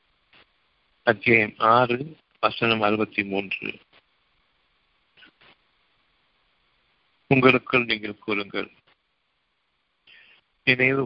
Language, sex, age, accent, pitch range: Tamil, male, 50-69, native, 105-130 Hz